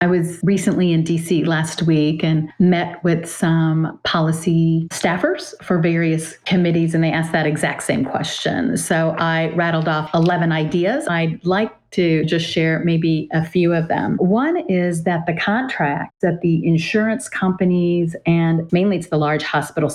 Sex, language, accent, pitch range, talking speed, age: female, English, American, 155-180 Hz, 160 wpm, 40-59